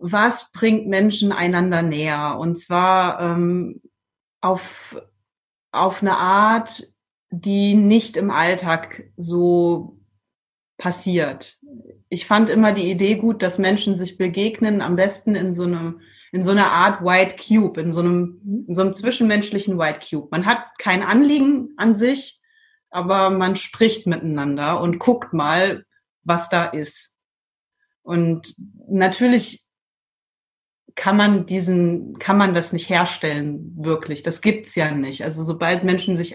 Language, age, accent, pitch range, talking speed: German, 30-49, German, 175-225 Hz, 140 wpm